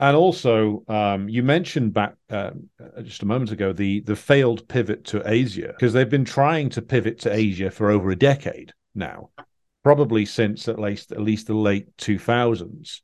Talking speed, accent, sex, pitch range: 180 wpm, British, male, 100-125 Hz